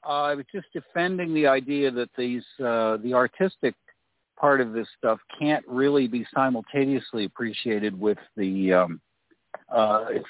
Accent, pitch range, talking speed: American, 100-125 Hz, 150 wpm